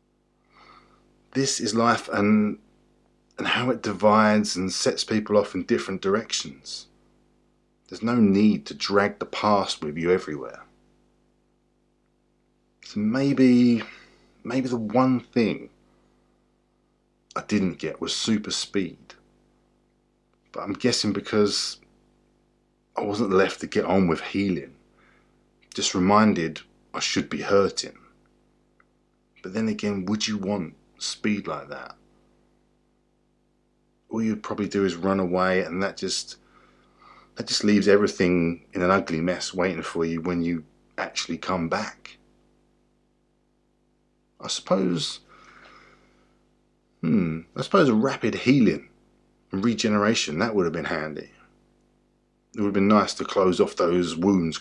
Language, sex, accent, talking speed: English, male, British, 125 wpm